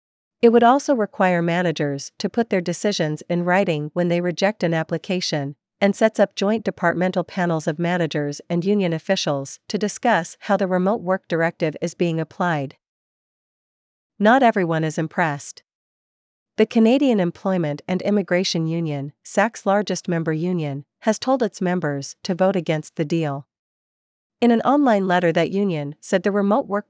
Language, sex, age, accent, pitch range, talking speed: English, female, 40-59, American, 165-200 Hz, 155 wpm